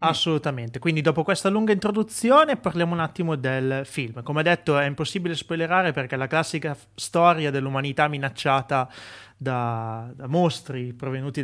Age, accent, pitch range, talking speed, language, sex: 30-49, native, 130-160 Hz, 145 wpm, Italian, male